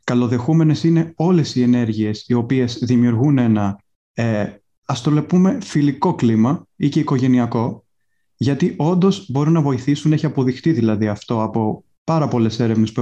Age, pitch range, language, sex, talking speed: 30-49, 115-160 Hz, Greek, male, 145 wpm